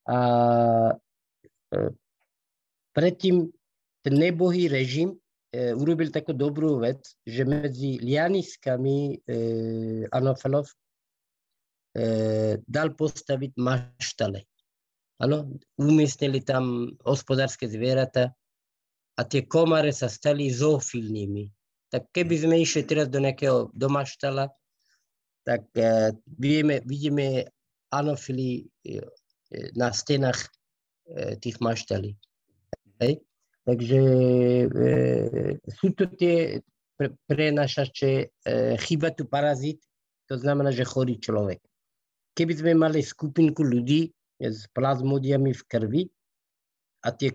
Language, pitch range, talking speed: Slovak, 120-150 Hz, 95 wpm